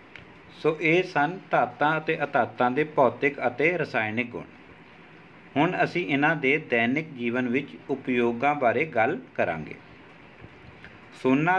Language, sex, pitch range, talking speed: Punjabi, male, 130-155 Hz, 120 wpm